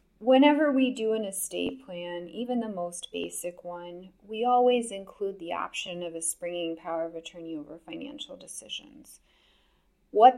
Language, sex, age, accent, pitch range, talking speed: English, female, 30-49, American, 170-220 Hz, 150 wpm